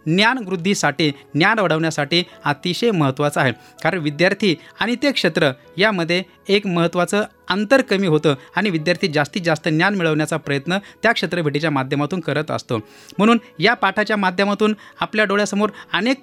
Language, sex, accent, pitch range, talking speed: Marathi, male, native, 155-210 Hz, 135 wpm